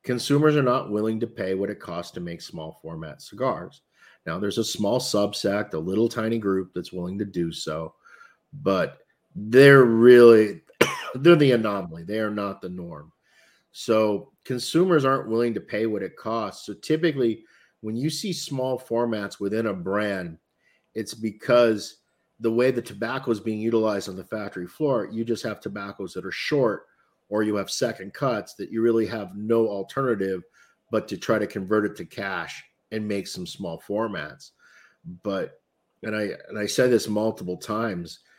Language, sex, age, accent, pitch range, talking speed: English, male, 50-69, American, 95-125 Hz, 175 wpm